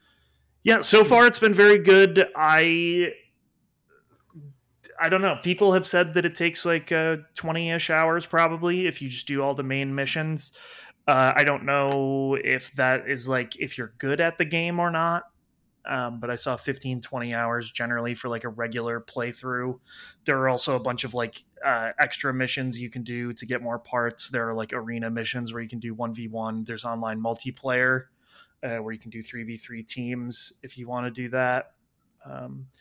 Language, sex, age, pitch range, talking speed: English, male, 20-39, 120-175 Hz, 190 wpm